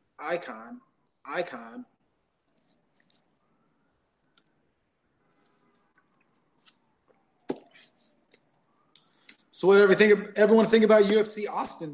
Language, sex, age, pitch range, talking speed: English, male, 30-49, 170-200 Hz, 50 wpm